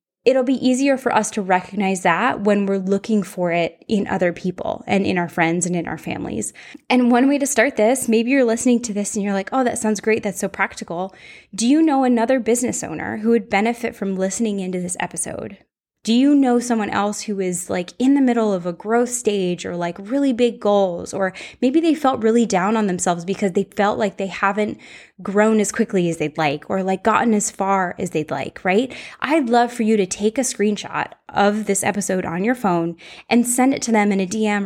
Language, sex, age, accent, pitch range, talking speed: English, female, 10-29, American, 190-240 Hz, 225 wpm